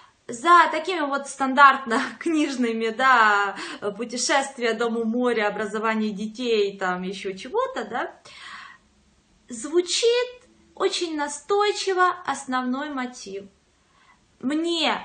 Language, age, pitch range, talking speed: Russian, 20-39, 230-330 Hz, 85 wpm